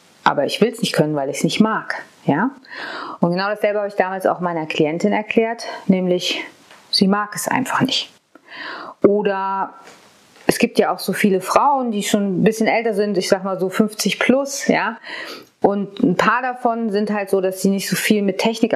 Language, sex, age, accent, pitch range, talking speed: German, female, 30-49, German, 180-225 Hz, 200 wpm